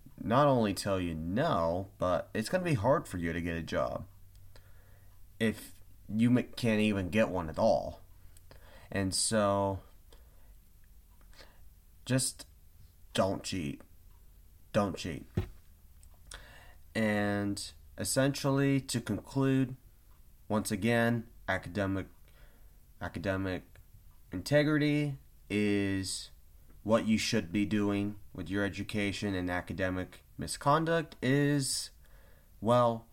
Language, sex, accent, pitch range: English, male, American, 90-115 Hz